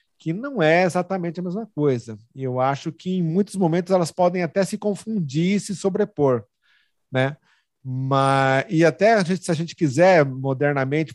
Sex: male